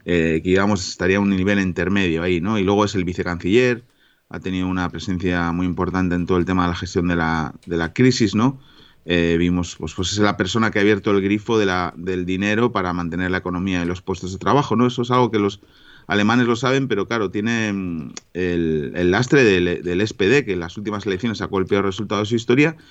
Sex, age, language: male, 30-49, Spanish